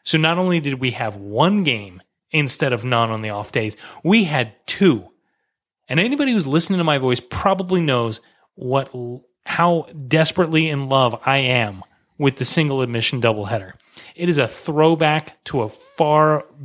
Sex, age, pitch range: male, 30-49, 125-165 Hz